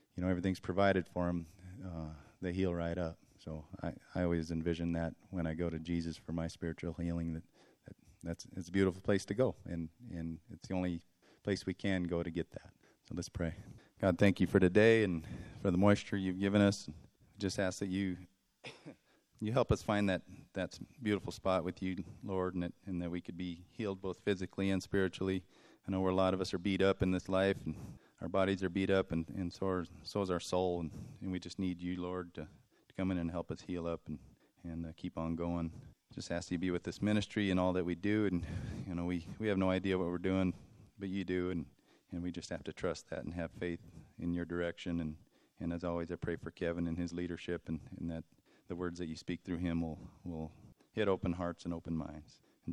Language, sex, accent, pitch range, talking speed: English, male, American, 85-95 Hz, 240 wpm